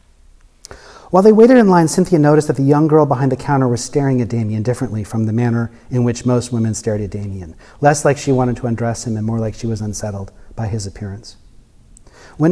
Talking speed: 220 wpm